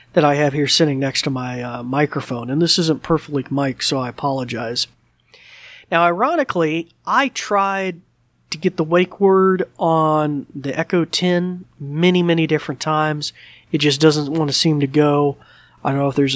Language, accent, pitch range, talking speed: English, American, 135-170 Hz, 175 wpm